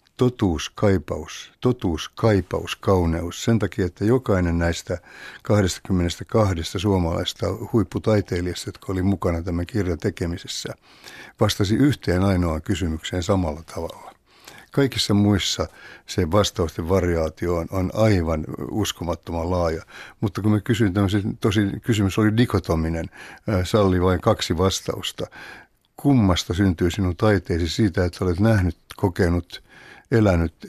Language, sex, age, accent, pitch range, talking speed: Finnish, male, 60-79, native, 90-105 Hz, 110 wpm